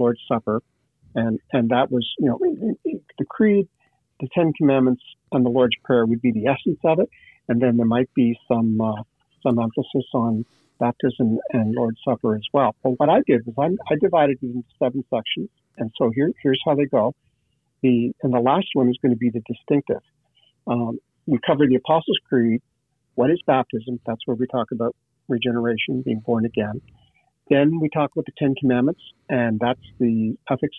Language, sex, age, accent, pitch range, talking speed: English, male, 50-69, American, 120-140 Hz, 190 wpm